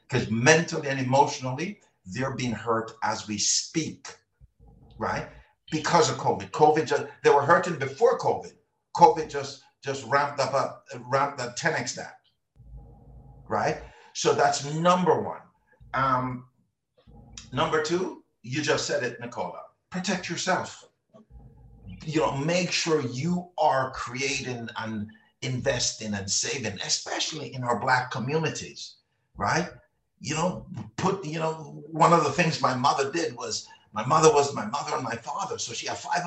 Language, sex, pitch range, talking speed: English, male, 125-170 Hz, 145 wpm